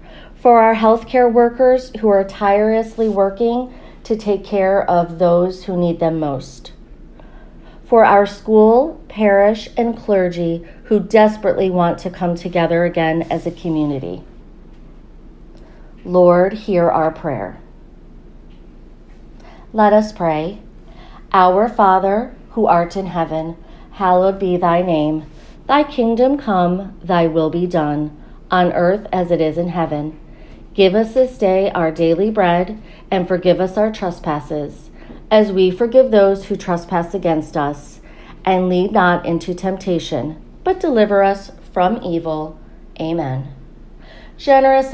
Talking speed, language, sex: 130 wpm, English, female